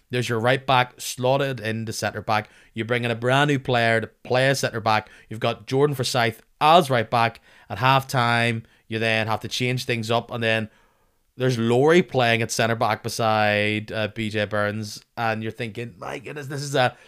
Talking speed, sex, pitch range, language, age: 175 wpm, male, 110-130 Hz, English, 20-39